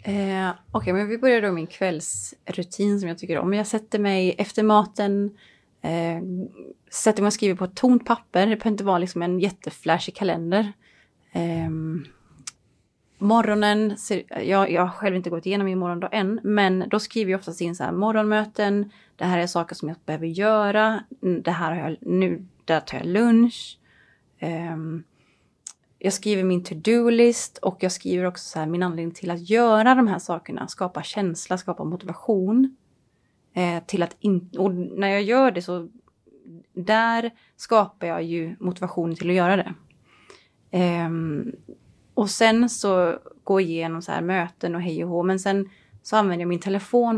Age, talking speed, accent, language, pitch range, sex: 30-49, 170 wpm, native, Swedish, 170-210 Hz, female